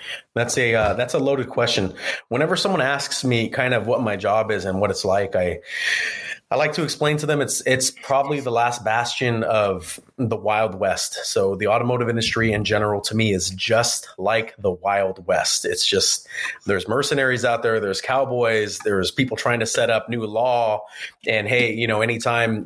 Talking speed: 195 wpm